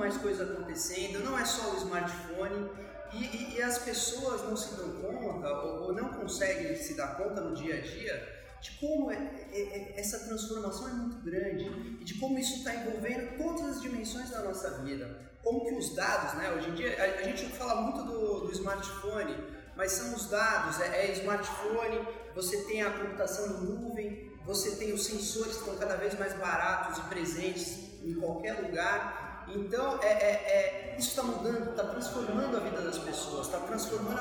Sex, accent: male, Brazilian